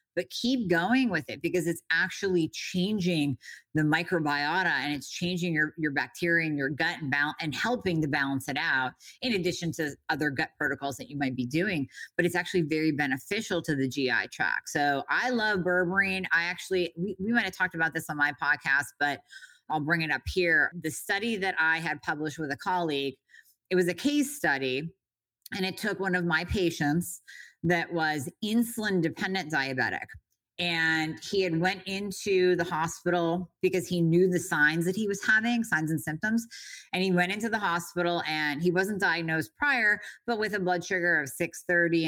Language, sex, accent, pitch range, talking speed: English, female, American, 150-185 Hz, 185 wpm